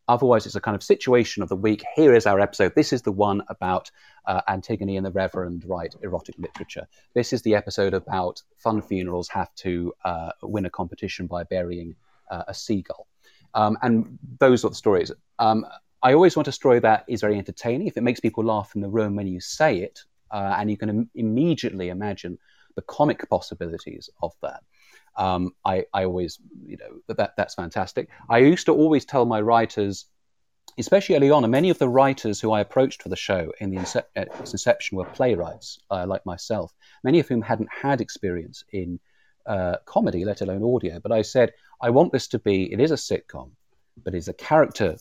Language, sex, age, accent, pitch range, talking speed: English, male, 30-49, British, 95-120 Hz, 200 wpm